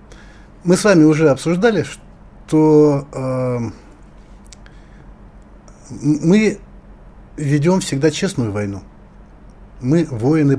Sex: male